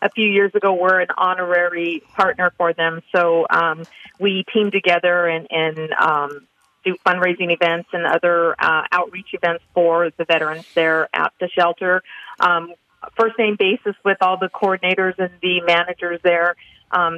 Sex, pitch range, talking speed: female, 170-185 Hz, 160 wpm